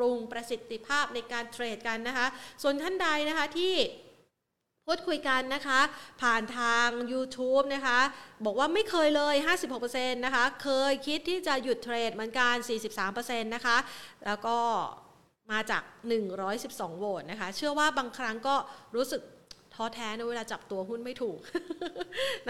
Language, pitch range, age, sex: Thai, 200-250 Hz, 30-49, female